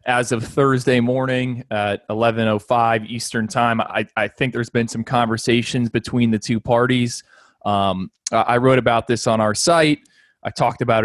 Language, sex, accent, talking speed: English, male, American, 175 wpm